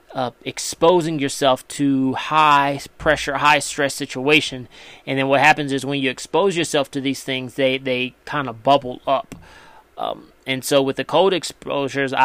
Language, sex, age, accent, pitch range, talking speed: English, male, 30-49, American, 135-145 Hz, 160 wpm